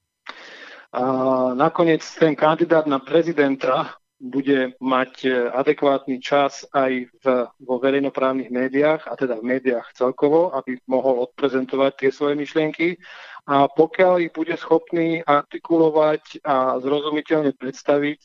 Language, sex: Slovak, male